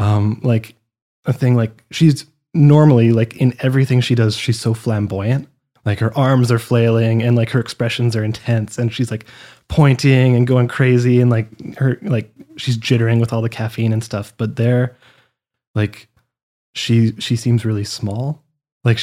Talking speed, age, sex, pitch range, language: 170 wpm, 20-39, male, 110-125 Hz, English